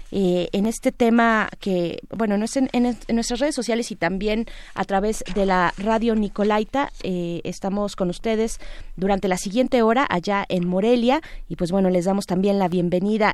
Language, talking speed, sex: Spanish, 185 wpm, female